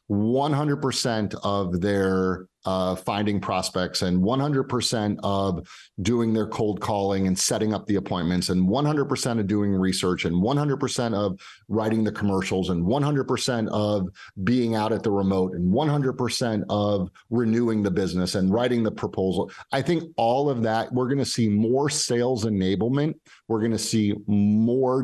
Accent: American